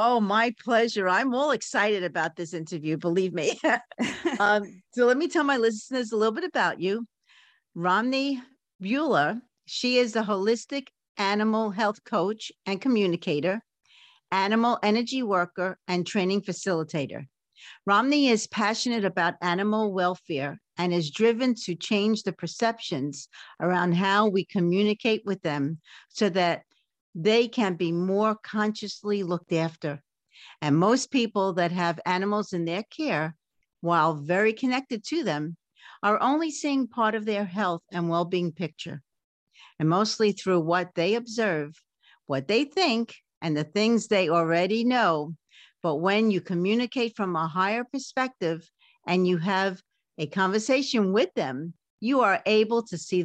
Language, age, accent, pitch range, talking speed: English, 50-69, American, 175-230 Hz, 145 wpm